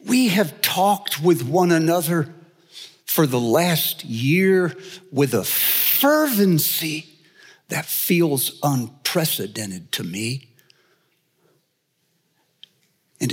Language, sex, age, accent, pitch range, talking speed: English, male, 60-79, American, 125-170 Hz, 85 wpm